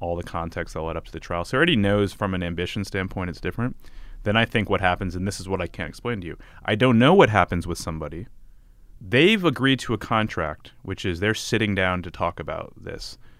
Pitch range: 90-110 Hz